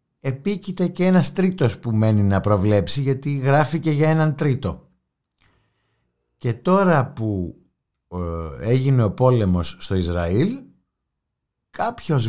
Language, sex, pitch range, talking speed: Greek, male, 90-145 Hz, 110 wpm